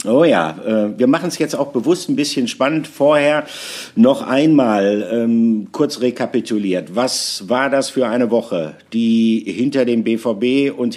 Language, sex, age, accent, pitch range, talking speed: German, male, 50-69, German, 115-140 Hz, 160 wpm